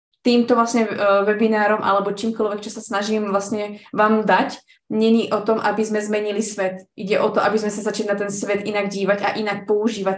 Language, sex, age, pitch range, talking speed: Slovak, female, 20-39, 195-220 Hz, 195 wpm